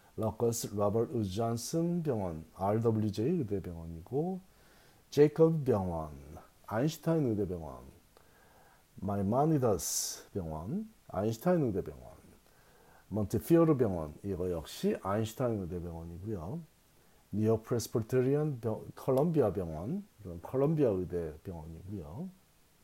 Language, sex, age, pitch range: Korean, male, 40-59, 90-140 Hz